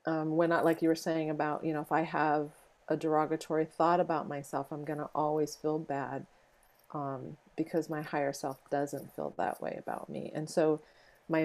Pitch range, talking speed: 150-180 Hz, 200 wpm